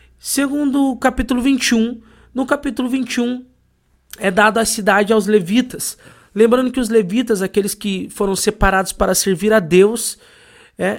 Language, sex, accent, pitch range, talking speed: Portuguese, male, Brazilian, 185-220 Hz, 140 wpm